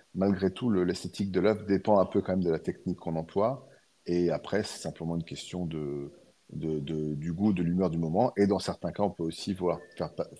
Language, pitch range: French, 85-100 Hz